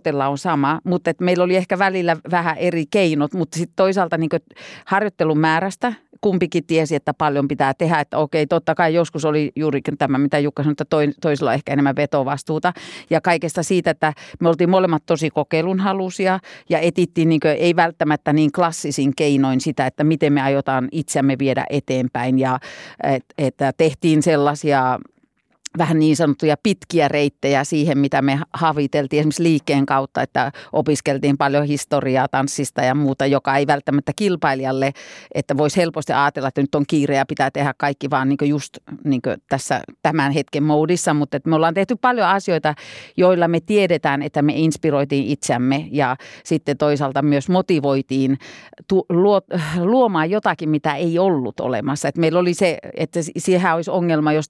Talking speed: 160 wpm